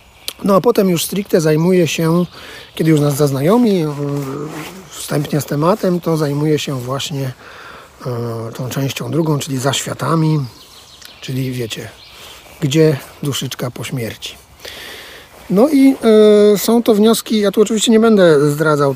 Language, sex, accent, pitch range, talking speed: Polish, male, native, 145-180 Hz, 130 wpm